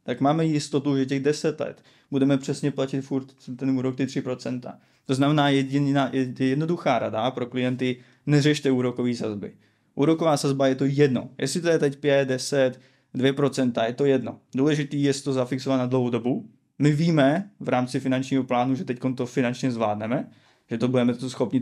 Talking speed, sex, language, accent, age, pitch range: 170 wpm, male, Czech, native, 20-39, 125-145 Hz